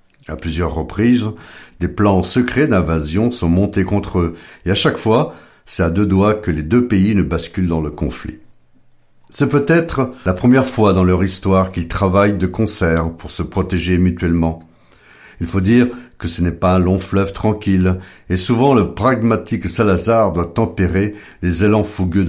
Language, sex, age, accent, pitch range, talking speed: French, male, 60-79, French, 85-105 Hz, 175 wpm